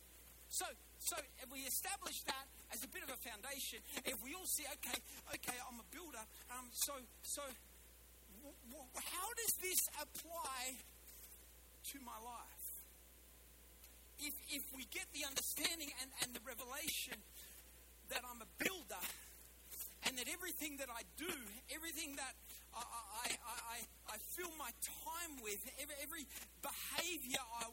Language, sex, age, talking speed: English, male, 40-59, 145 wpm